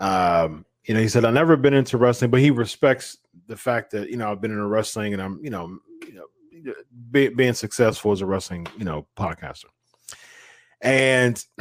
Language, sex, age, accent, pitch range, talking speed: English, male, 30-49, American, 105-130 Hz, 195 wpm